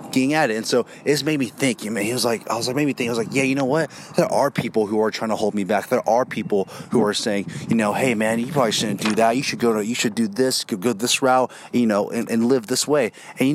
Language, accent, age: English, American, 30-49